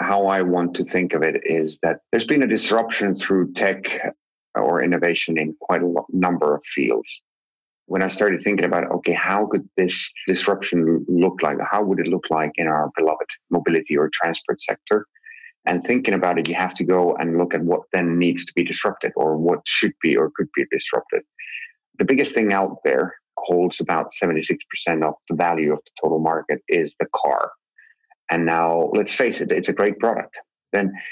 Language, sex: English, male